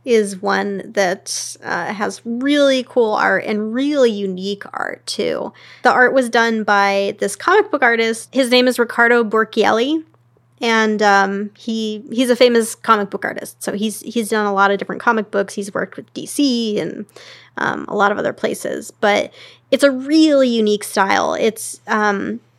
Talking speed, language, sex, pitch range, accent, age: 175 wpm, English, female, 200-245 Hz, American, 20-39